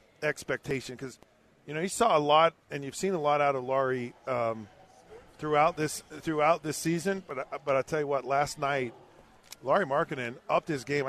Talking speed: 190 wpm